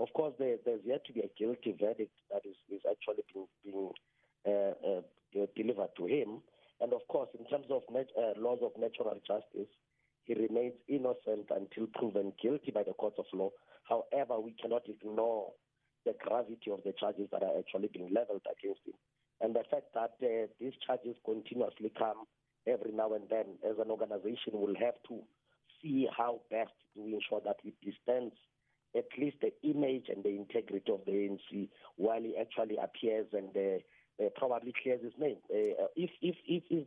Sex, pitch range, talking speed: male, 105-170 Hz, 170 wpm